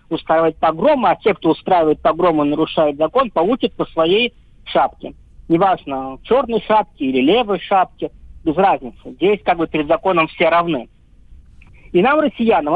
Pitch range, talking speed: 160-230 Hz, 145 wpm